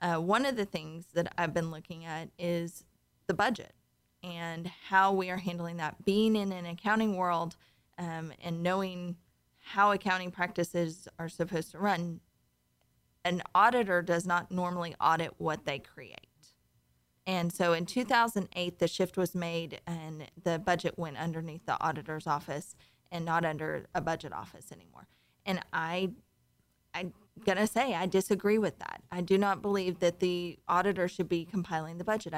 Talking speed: 165 wpm